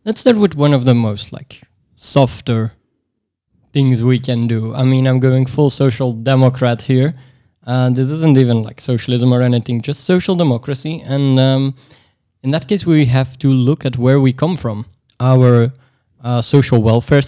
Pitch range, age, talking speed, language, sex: 115-135 Hz, 20-39, 175 wpm, English, male